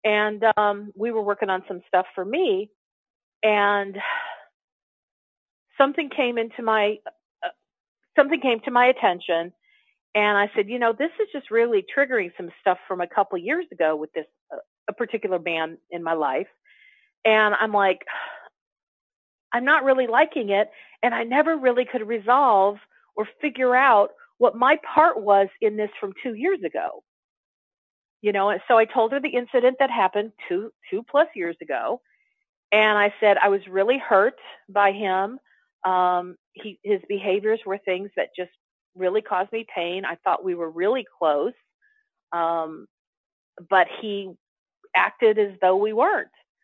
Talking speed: 160 wpm